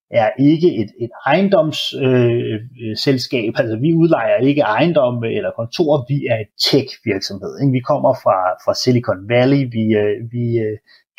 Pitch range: 115-150 Hz